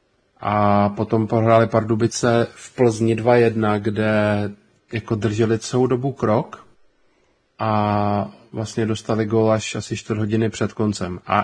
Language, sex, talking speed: Czech, male, 125 wpm